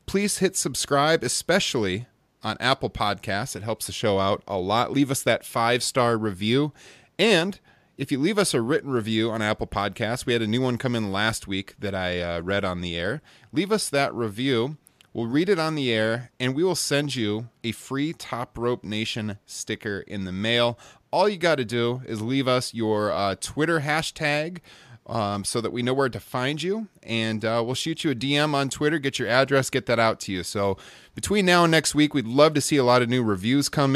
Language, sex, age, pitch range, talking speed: English, male, 30-49, 105-140 Hz, 220 wpm